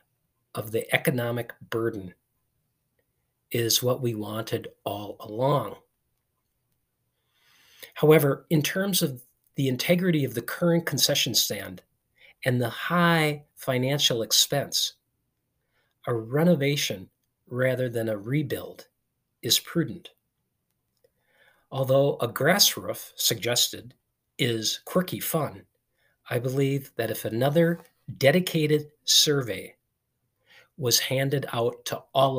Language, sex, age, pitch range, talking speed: English, male, 50-69, 115-145 Hz, 100 wpm